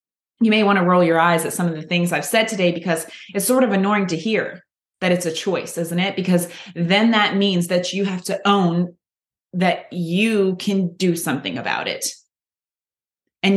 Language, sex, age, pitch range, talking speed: English, female, 20-39, 175-215 Hz, 200 wpm